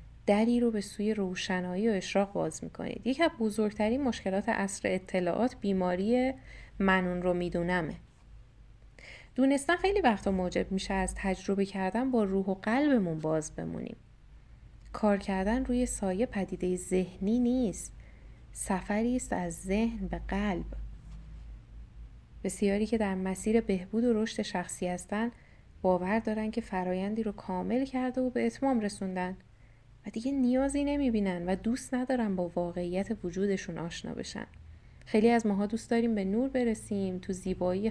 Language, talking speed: Persian, 140 wpm